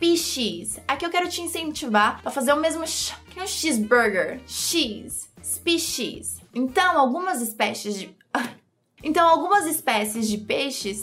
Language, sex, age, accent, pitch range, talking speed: Portuguese, female, 20-39, Brazilian, 230-310 Hz, 130 wpm